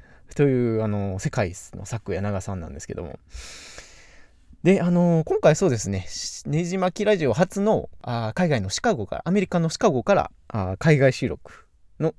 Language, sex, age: Japanese, male, 20-39